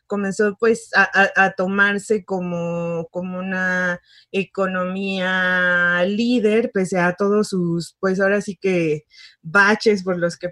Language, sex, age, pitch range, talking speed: Spanish, female, 20-39, 180-210 Hz, 125 wpm